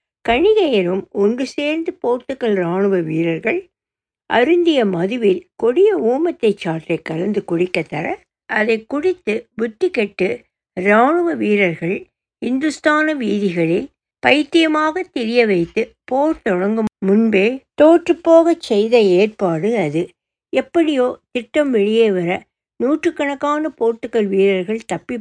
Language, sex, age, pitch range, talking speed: Tamil, female, 60-79, 190-290 Hz, 90 wpm